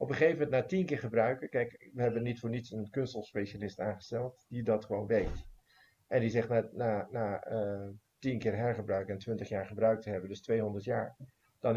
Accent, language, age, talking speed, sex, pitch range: Dutch, Dutch, 50-69, 210 wpm, male, 110-140 Hz